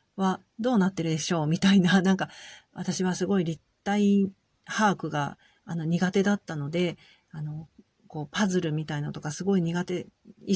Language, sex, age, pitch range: Japanese, female, 40-59, 165-220 Hz